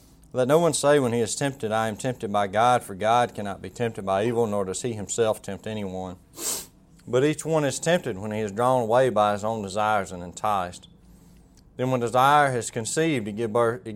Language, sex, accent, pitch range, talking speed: English, male, American, 105-125 Hz, 205 wpm